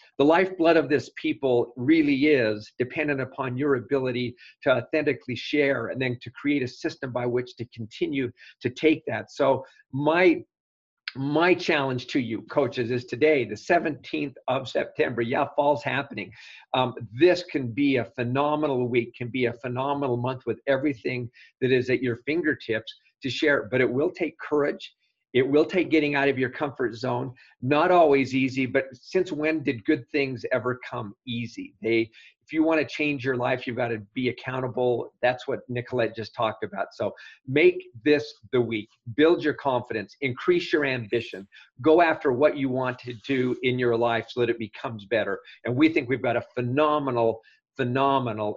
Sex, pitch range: male, 120-150 Hz